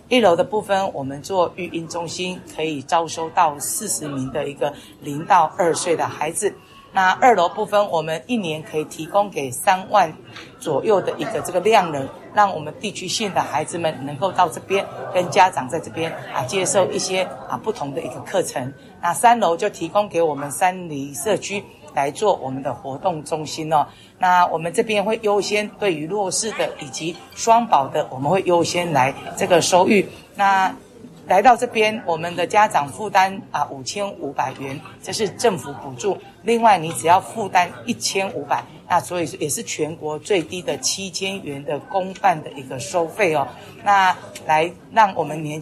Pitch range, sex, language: 155-200 Hz, female, Chinese